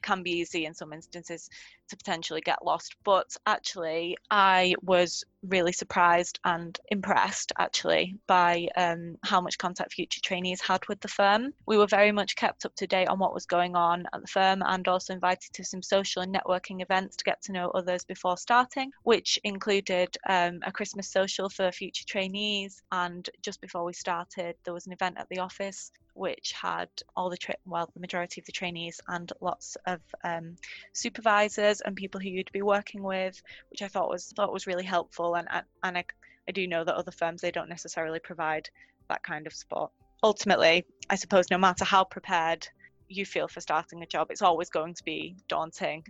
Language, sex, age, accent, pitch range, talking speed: English, female, 20-39, British, 175-195 Hz, 195 wpm